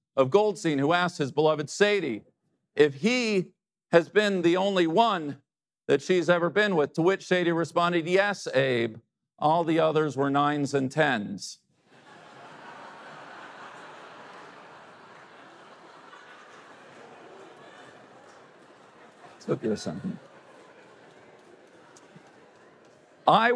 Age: 50-69